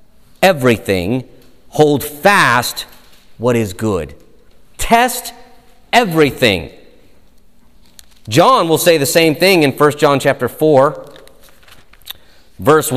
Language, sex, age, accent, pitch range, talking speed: English, male, 40-59, American, 125-190 Hz, 95 wpm